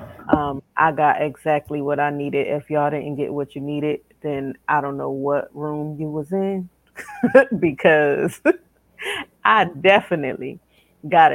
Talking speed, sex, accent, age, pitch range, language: 145 wpm, female, American, 30-49, 145-160 Hz, English